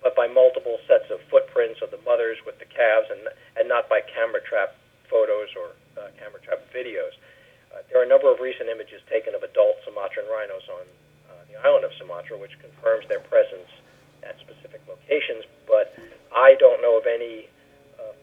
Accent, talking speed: American, 190 wpm